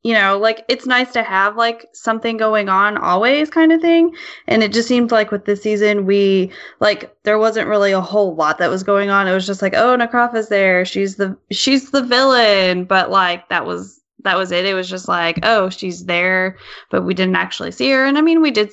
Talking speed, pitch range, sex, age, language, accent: 235 wpm, 190-225 Hz, female, 20-39, English, American